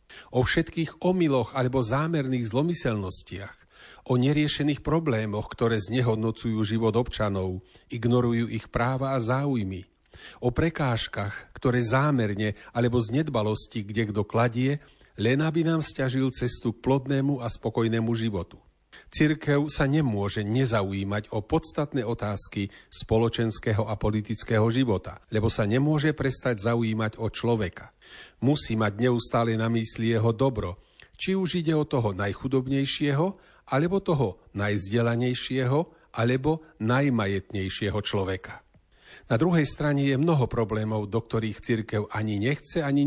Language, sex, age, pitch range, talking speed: Slovak, male, 40-59, 110-140 Hz, 120 wpm